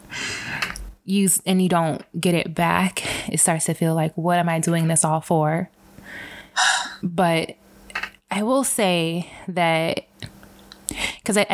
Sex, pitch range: female, 160-185 Hz